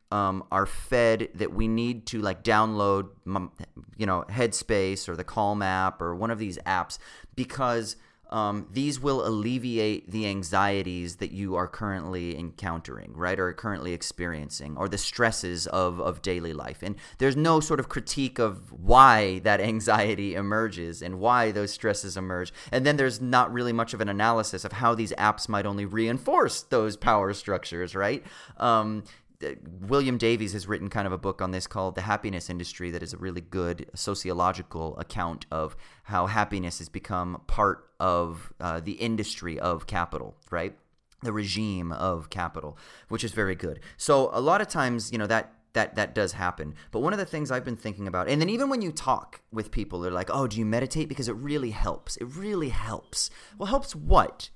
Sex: male